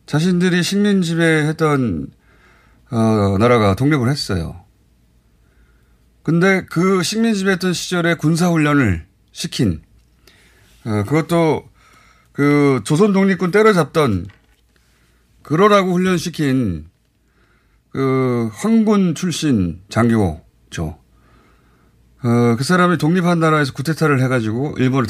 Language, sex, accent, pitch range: Korean, male, native, 105-155 Hz